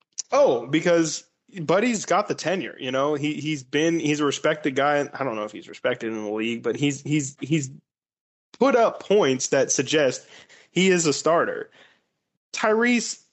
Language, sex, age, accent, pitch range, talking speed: English, male, 20-39, American, 120-150 Hz, 175 wpm